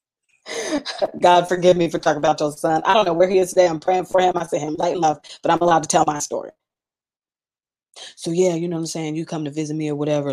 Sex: female